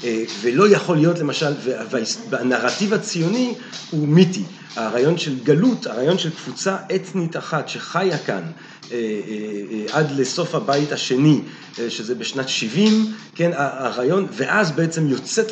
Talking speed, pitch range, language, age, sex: 115 wpm, 140-195 Hz, Hebrew, 40-59, male